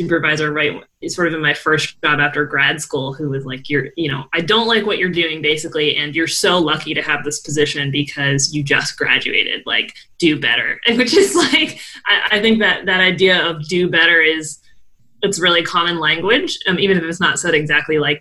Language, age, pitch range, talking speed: English, 20-39, 155-200 Hz, 210 wpm